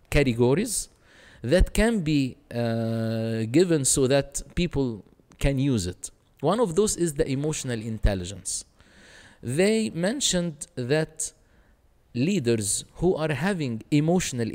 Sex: male